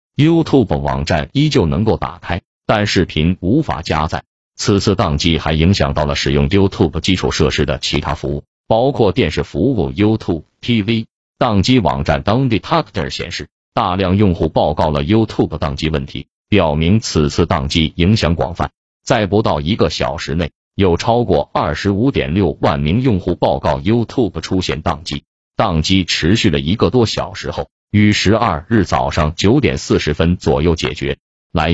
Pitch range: 80-110 Hz